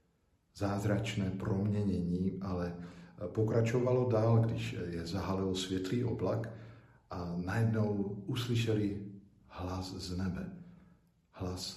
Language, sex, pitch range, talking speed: Slovak, male, 90-105 Hz, 85 wpm